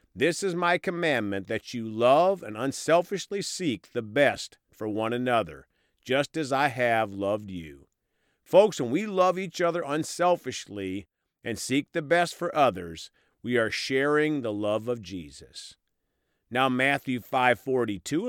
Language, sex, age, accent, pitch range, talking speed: English, male, 50-69, American, 105-155 Hz, 145 wpm